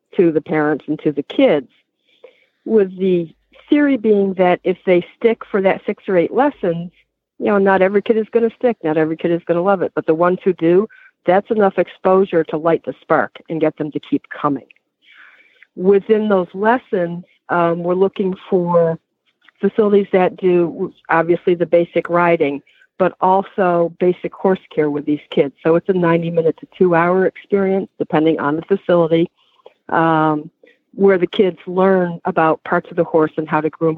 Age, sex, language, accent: 60-79, female, English, American